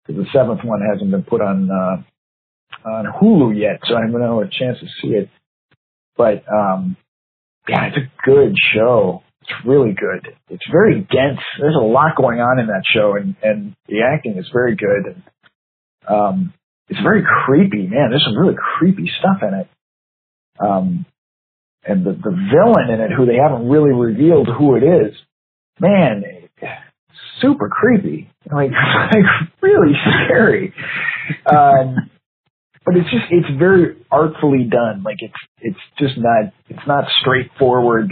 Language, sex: English, male